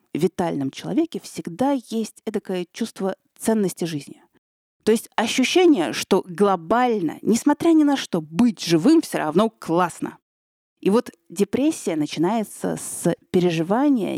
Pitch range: 170-240 Hz